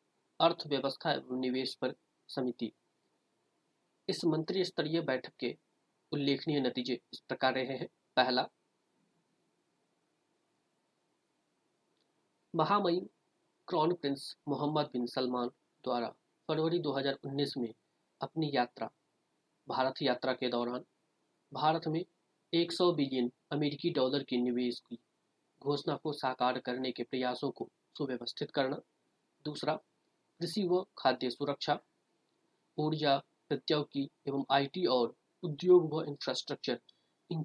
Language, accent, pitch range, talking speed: Hindi, native, 130-160 Hz, 100 wpm